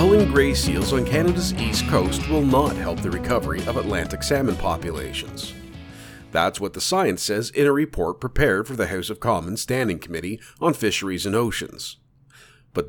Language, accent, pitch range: English, American, 90-130 Hz